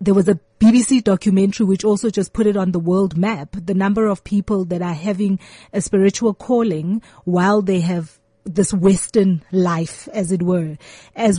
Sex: female